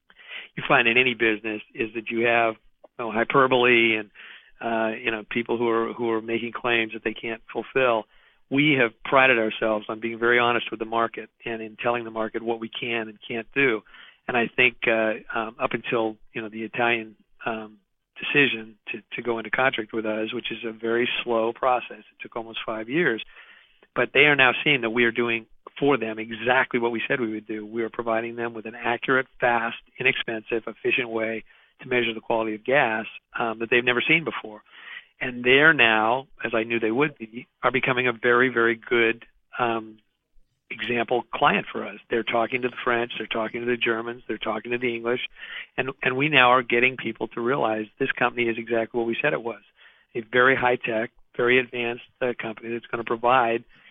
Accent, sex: American, male